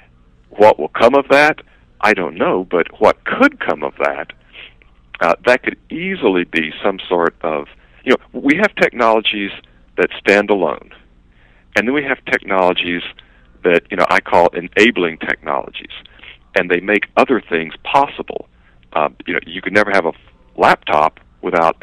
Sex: male